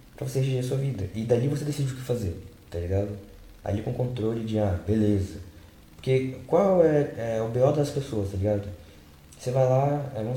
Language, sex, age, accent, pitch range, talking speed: Portuguese, male, 20-39, Brazilian, 105-130 Hz, 205 wpm